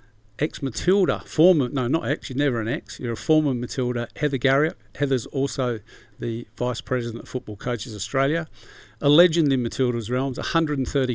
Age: 50-69